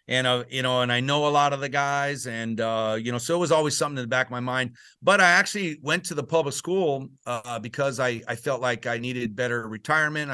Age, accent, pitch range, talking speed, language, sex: 40-59, American, 120-145 Hz, 260 wpm, English, male